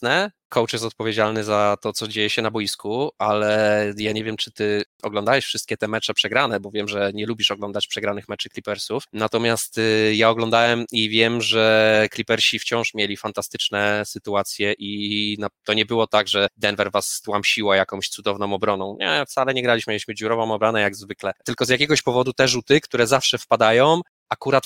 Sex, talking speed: male, 175 wpm